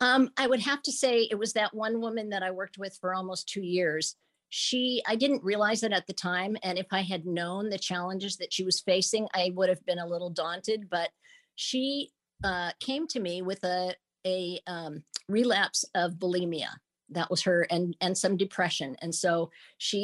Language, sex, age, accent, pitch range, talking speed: English, female, 50-69, American, 170-200 Hz, 205 wpm